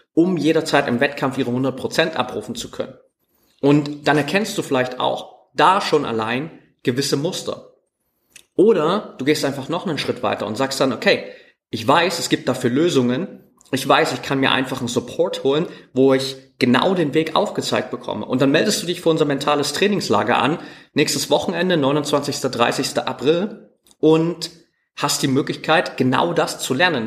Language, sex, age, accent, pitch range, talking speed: German, male, 30-49, German, 130-160 Hz, 170 wpm